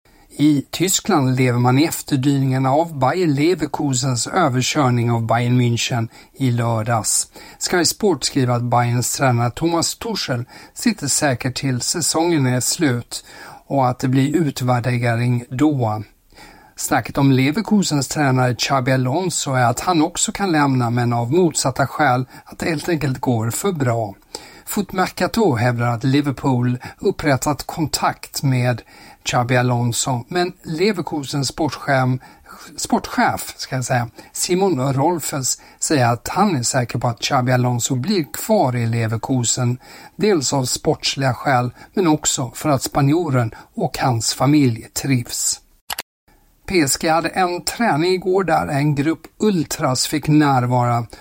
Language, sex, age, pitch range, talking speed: Swedish, male, 60-79, 125-155 Hz, 125 wpm